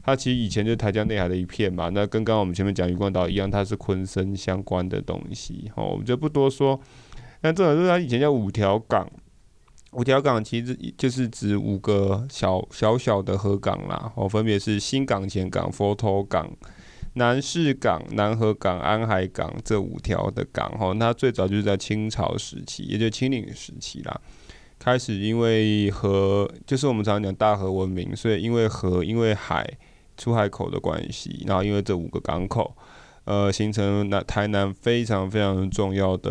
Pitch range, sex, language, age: 95-115 Hz, male, Chinese, 20-39